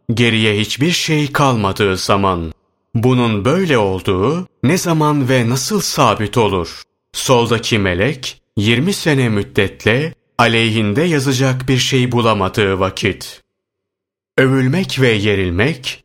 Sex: male